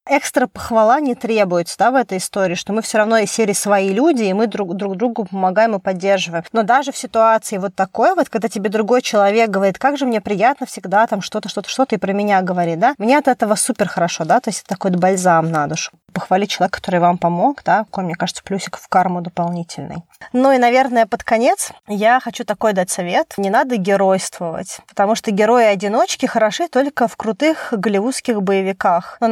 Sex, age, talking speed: female, 20-39, 200 wpm